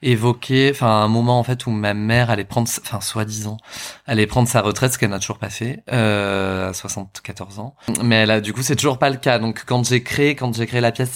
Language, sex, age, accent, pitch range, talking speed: French, male, 20-39, French, 110-120 Hz, 240 wpm